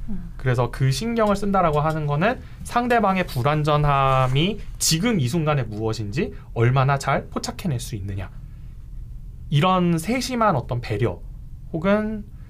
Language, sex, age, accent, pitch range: Korean, male, 20-39, native, 115-170 Hz